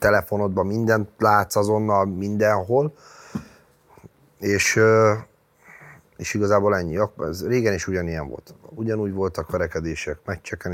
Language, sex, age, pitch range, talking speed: Hungarian, male, 30-49, 85-110 Hz, 100 wpm